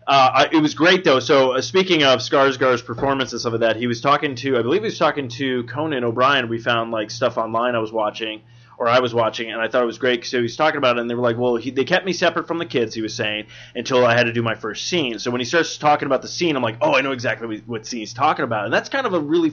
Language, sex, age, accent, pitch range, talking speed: English, male, 20-39, American, 120-140 Hz, 310 wpm